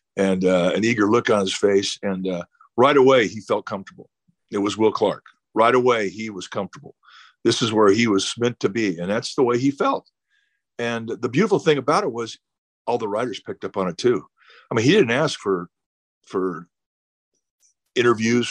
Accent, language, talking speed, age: American, English, 200 wpm, 50-69